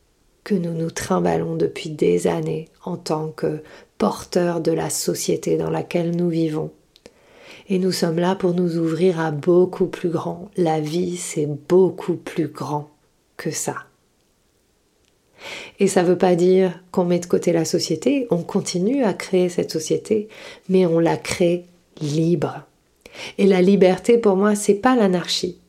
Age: 40-59